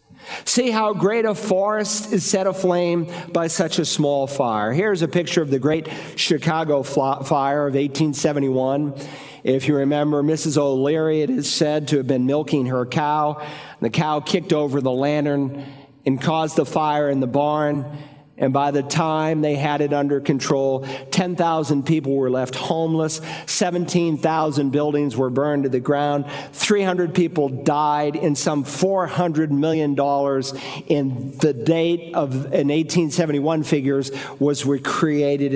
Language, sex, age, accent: English, male, 50-69, American